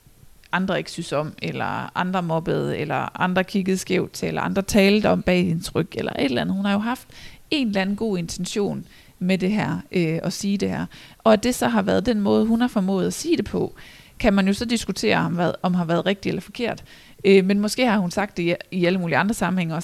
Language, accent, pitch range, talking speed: Danish, native, 180-215 Hz, 245 wpm